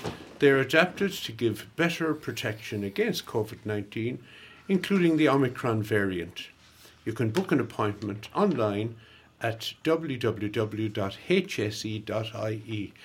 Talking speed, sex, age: 95 wpm, male, 60-79